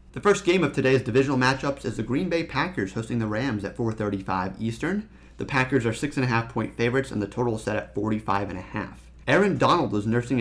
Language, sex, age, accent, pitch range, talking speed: English, male, 30-49, American, 105-135 Hz, 235 wpm